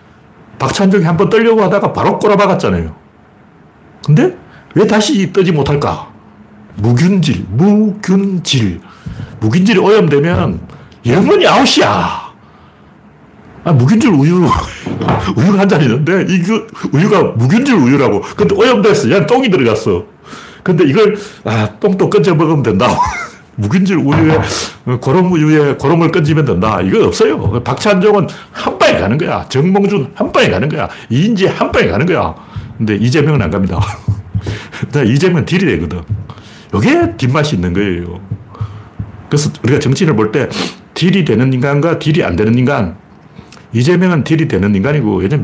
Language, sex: Korean, male